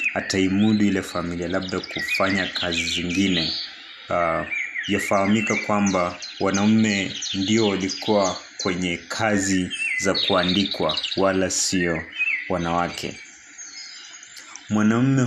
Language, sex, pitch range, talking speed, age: Swahili, male, 90-105 Hz, 85 wpm, 30-49